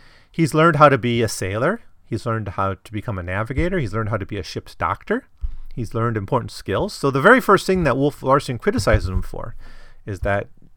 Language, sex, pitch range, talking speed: English, male, 95-135 Hz, 215 wpm